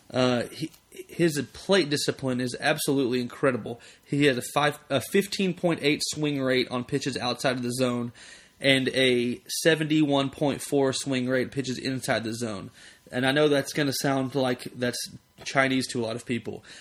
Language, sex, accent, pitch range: English, male, American, 125-140 Hz